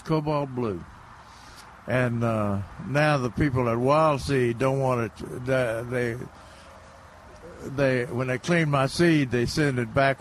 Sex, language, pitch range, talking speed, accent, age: male, English, 110-150 Hz, 145 wpm, American, 60-79